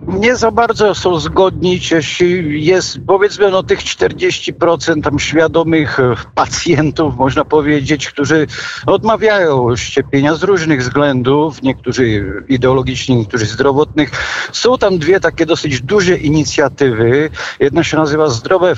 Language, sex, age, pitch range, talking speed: Polish, male, 50-69, 130-170 Hz, 120 wpm